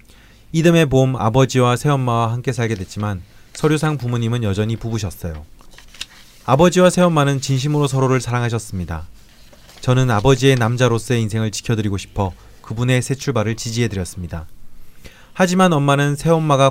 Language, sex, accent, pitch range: Korean, male, native, 105-140 Hz